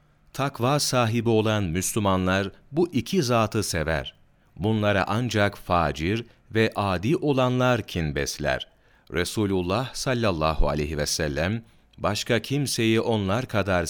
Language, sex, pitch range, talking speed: Turkish, male, 85-120 Hz, 110 wpm